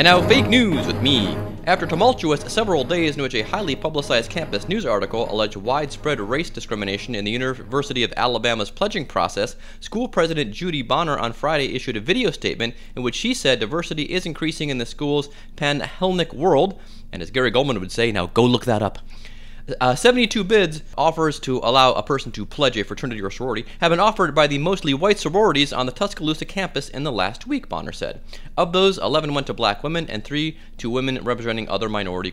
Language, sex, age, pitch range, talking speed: English, male, 30-49, 115-160 Hz, 200 wpm